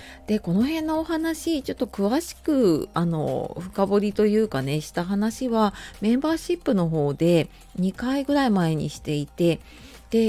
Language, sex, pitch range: Japanese, female, 160-225 Hz